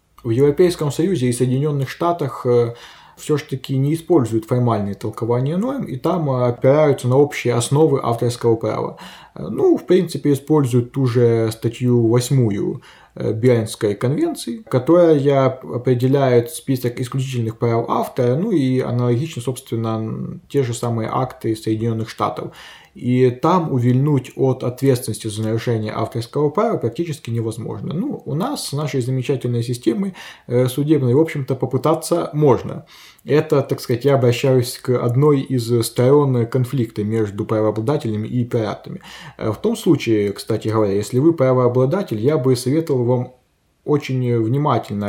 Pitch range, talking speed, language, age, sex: 120-150 Hz, 130 wpm, Ukrainian, 20-39, male